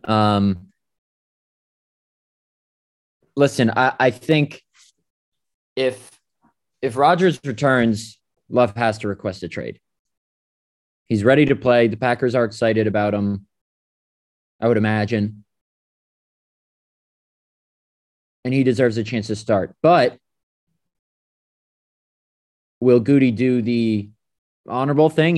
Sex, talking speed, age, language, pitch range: male, 100 wpm, 20-39, English, 105-130 Hz